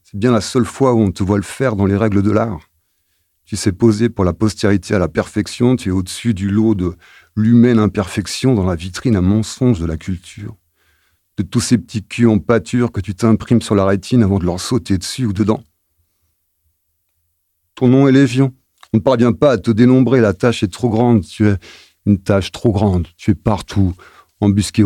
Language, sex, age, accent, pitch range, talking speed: French, male, 50-69, French, 90-115 Hz, 210 wpm